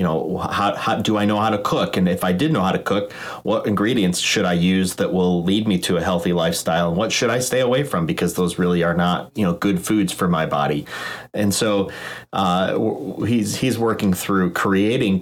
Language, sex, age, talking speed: English, male, 30-49, 225 wpm